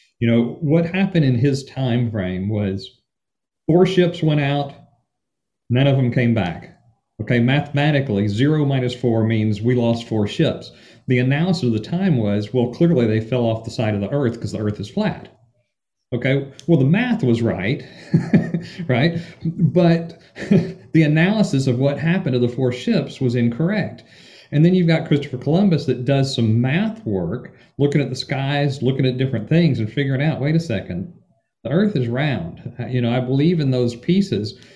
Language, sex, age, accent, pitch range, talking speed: English, male, 40-59, American, 115-165 Hz, 180 wpm